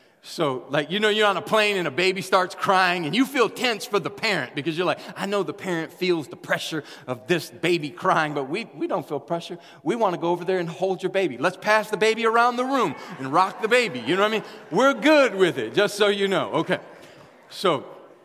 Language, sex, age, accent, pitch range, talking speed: English, male, 40-59, American, 175-235 Hz, 250 wpm